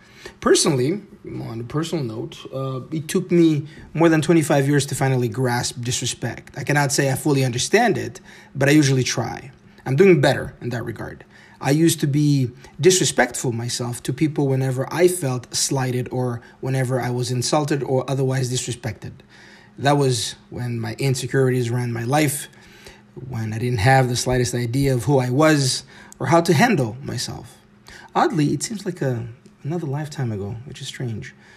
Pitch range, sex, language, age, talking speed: 125-150 Hz, male, English, 30-49, 170 wpm